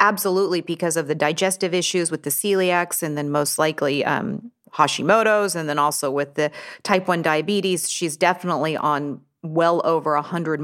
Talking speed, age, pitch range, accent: 165 wpm, 30-49, 165-210 Hz, American